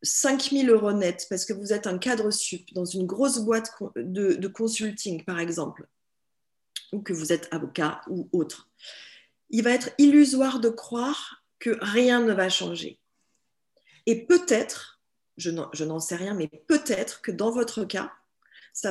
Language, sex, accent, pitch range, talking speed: English, female, French, 195-250 Hz, 165 wpm